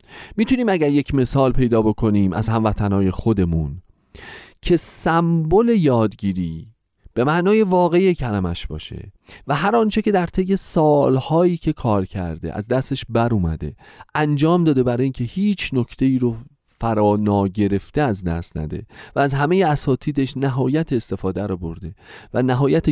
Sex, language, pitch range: male, Persian, 95-145 Hz